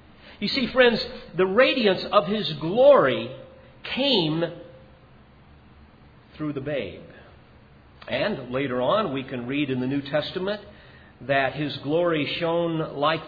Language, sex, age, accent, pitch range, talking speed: English, male, 50-69, American, 130-170 Hz, 120 wpm